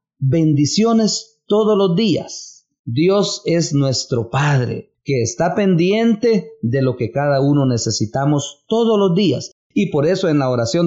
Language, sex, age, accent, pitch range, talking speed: English, male, 40-59, Mexican, 120-185 Hz, 145 wpm